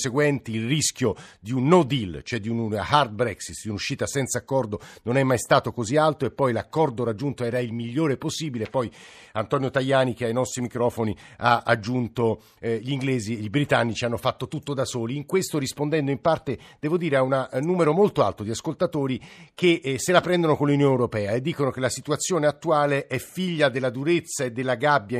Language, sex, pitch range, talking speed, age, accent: Italian, male, 120-150 Hz, 200 wpm, 50-69, native